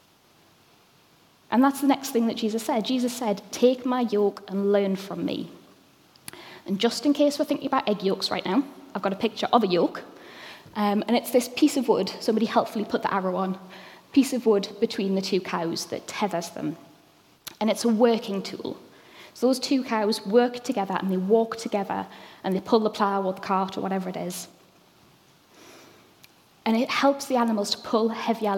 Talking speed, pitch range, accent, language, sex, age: 195 wpm, 195-245 Hz, British, English, female, 10-29